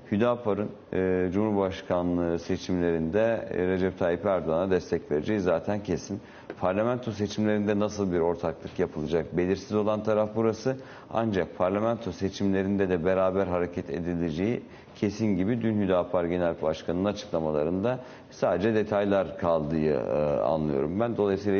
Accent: native